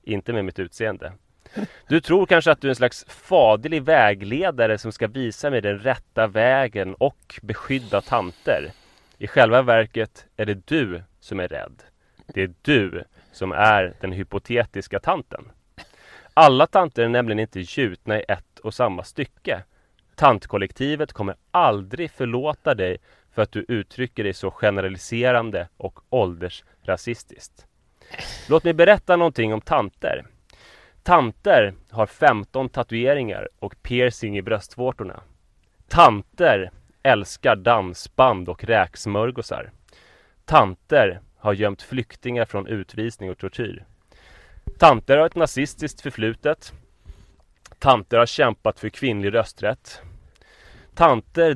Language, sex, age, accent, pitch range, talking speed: English, male, 30-49, Swedish, 95-130 Hz, 120 wpm